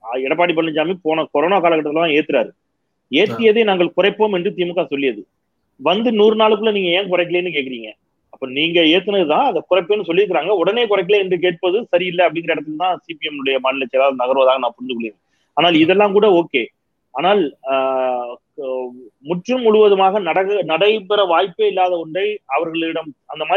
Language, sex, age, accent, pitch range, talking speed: Tamil, male, 30-49, native, 140-195 Hz, 110 wpm